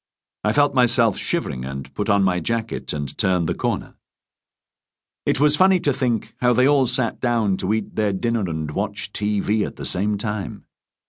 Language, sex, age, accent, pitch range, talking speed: English, male, 50-69, British, 100-130 Hz, 185 wpm